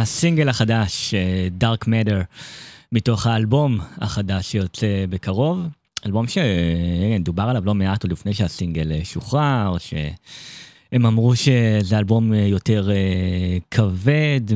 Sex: male